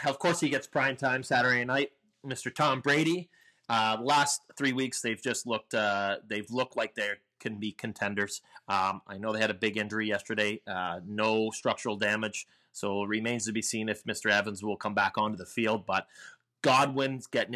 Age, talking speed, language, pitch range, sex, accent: 30-49, 190 wpm, English, 115-165 Hz, male, American